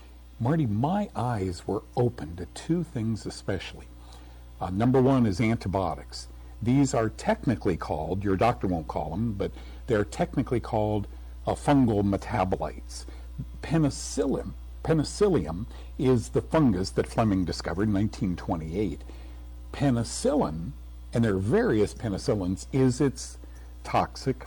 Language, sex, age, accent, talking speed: English, male, 50-69, American, 120 wpm